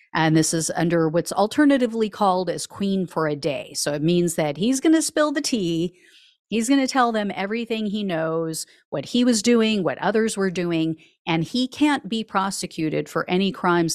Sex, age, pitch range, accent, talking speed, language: female, 40-59, 165-230 Hz, American, 200 wpm, English